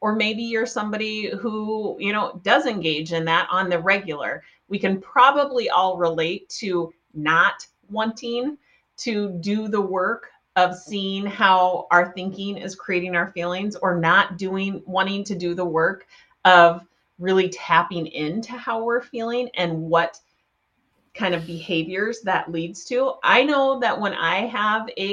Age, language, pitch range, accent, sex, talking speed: 30-49, English, 175-230 Hz, American, female, 155 wpm